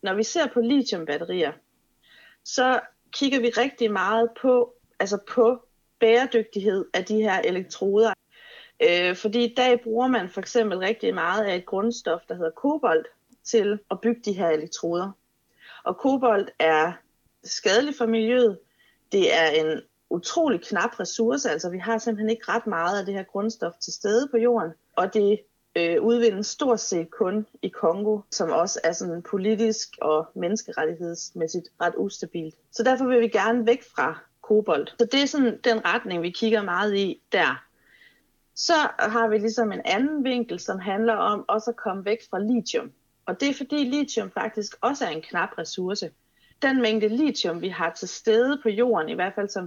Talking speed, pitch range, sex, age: 175 wpm, 185-240 Hz, female, 30-49